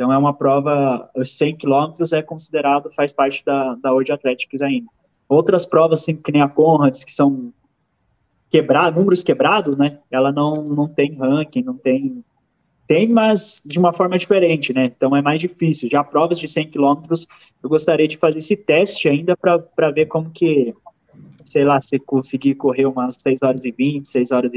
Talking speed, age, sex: 185 wpm, 20-39, male